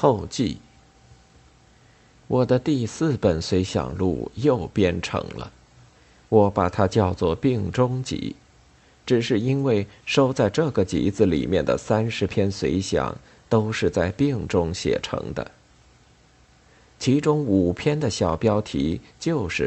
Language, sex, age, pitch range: Chinese, male, 50-69, 85-125 Hz